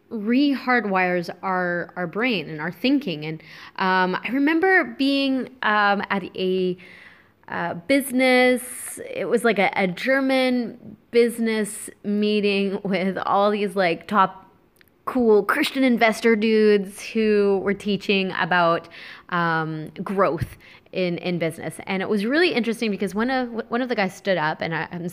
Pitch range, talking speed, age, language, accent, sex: 180-235 Hz, 140 wpm, 20-39, English, American, female